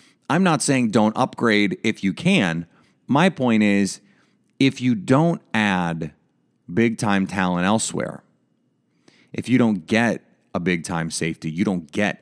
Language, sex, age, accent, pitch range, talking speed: English, male, 30-49, American, 95-140 Hz, 135 wpm